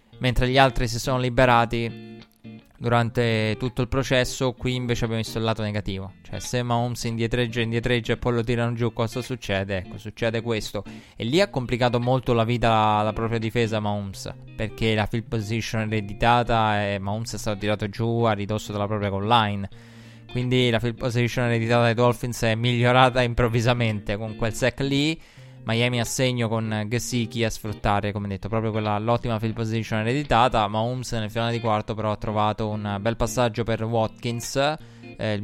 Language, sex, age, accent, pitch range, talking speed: Italian, male, 20-39, native, 110-120 Hz, 180 wpm